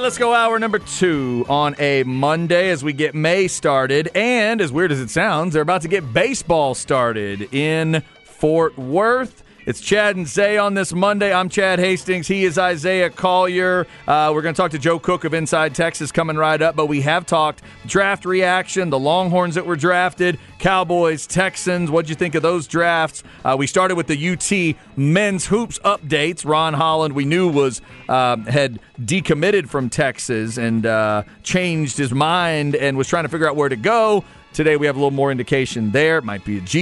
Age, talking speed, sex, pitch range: 40-59, 200 wpm, male, 135-180 Hz